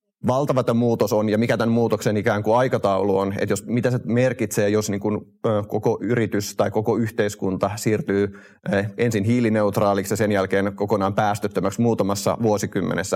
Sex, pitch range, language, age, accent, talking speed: male, 100-110 Hz, Finnish, 30-49, native, 140 wpm